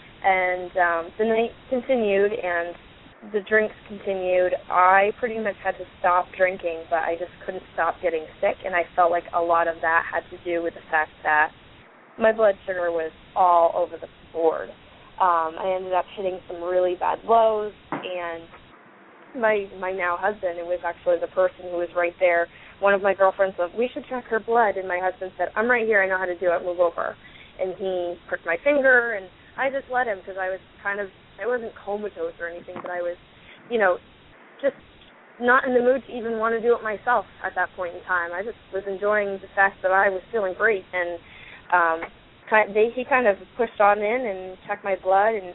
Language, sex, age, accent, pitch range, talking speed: English, female, 20-39, American, 180-215 Hz, 210 wpm